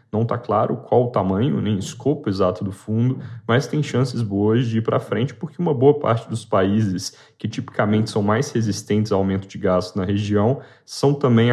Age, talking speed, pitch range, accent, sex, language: 10-29, 205 wpm, 110-125 Hz, Brazilian, male, Portuguese